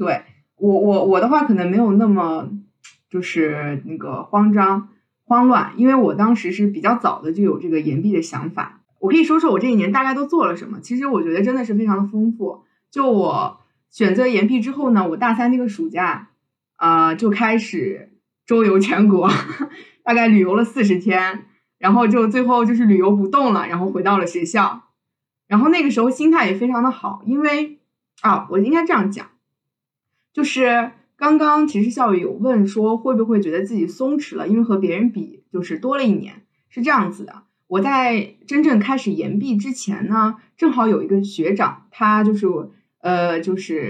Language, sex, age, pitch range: Chinese, female, 20-39, 195-250 Hz